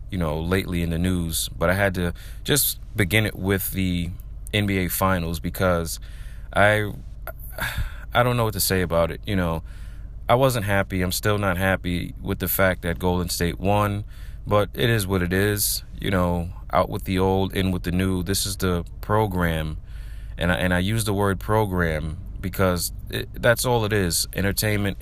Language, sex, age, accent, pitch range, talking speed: English, male, 30-49, American, 85-100 Hz, 185 wpm